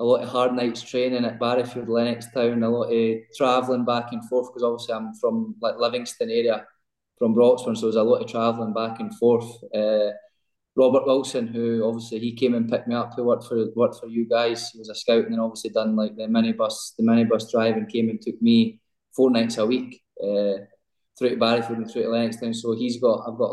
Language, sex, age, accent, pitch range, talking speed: English, male, 20-39, British, 110-125 Hz, 235 wpm